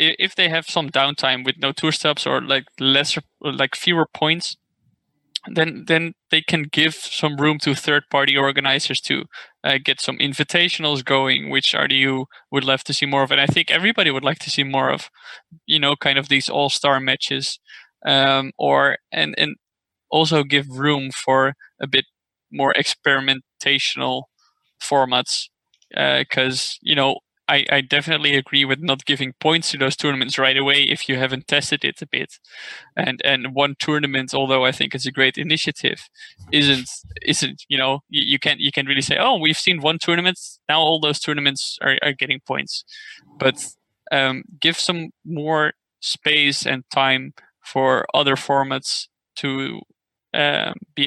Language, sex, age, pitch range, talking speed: English, male, 20-39, 135-160 Hz, 165 wpm